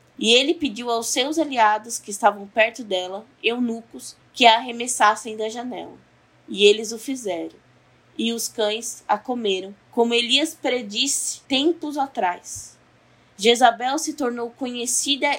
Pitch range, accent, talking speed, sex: 210-270 Hz, Brazilian, 135 wpm, female